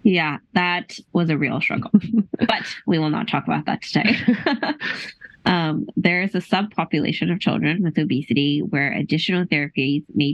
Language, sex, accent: English, female, American